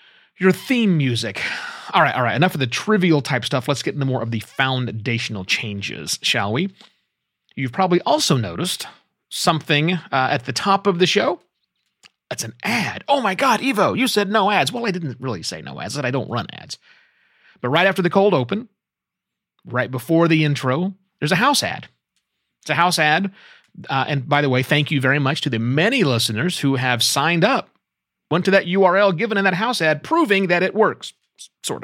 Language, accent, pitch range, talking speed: English, American, 120-190 Hz, 200 wpm